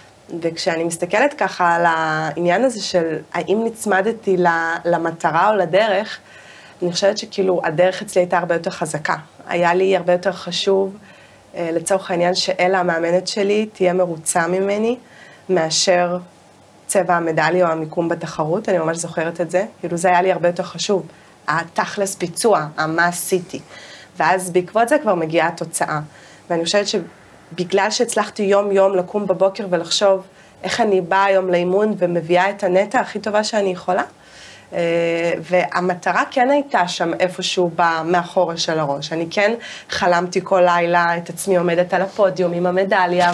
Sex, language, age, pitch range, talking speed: female, Hebrew, 20-39, 170-195 Hz, 145 wpm